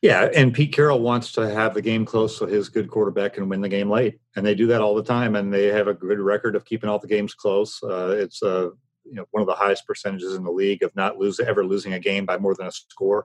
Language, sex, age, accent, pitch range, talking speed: English, male, 40-59, American, 105-125 Hz, 285 wpm